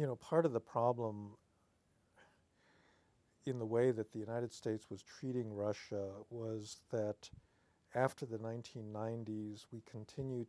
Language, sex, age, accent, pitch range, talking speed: English, male, 50-69, American, 105-120 Hz, 130 wpm